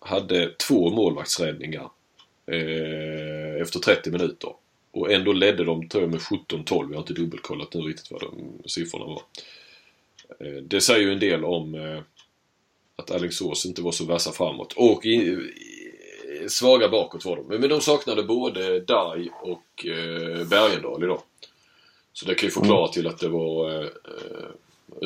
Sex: male